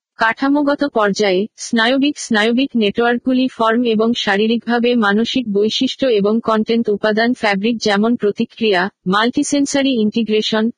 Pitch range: 215-245 Hz